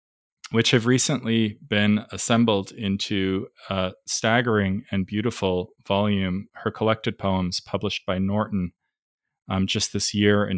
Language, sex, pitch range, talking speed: English, male, 95-105 Hz, 125 wpm